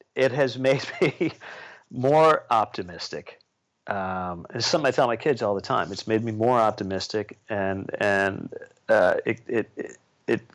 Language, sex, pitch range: English, male, 85-125 Hz